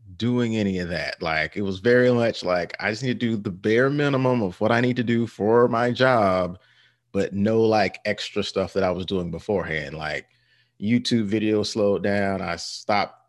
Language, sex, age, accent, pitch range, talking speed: English, male, 30-49, American, 100-130 Hz, 200 wpm